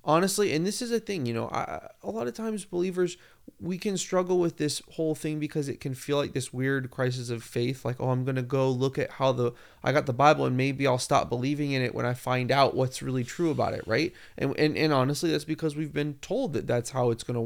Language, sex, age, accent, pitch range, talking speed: English, male, 20-39, American, 125-180 Hz, 265 wpm